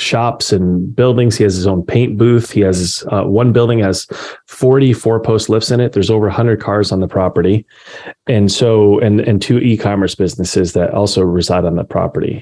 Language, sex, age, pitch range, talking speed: English, male, 30-49, 95-115 Hz, 195 wpm